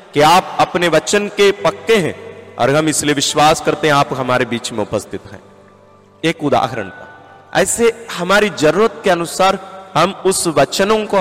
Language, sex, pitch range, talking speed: Hindi, male, 135-195 Hz, 160 wpm